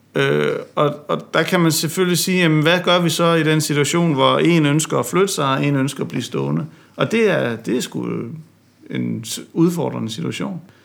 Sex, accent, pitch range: male, native, 130-155 Hz